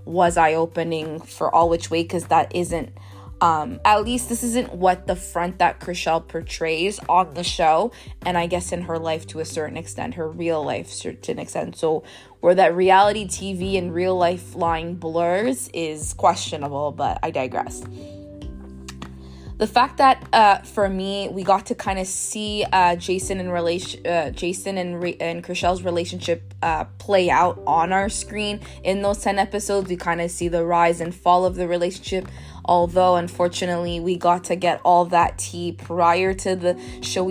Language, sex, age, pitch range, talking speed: English, female, 20-39, 165-190 Hz, 175 wpm